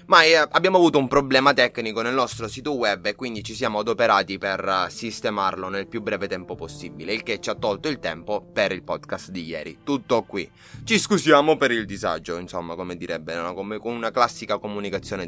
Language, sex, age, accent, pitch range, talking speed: Italian, male, 20-39, native, 105-145 Hz, 185 wpm